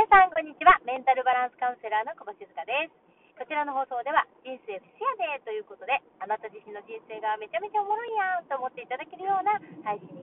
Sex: female